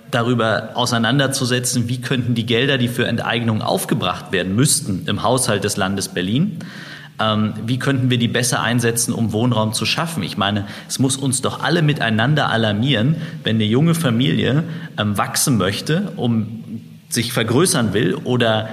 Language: German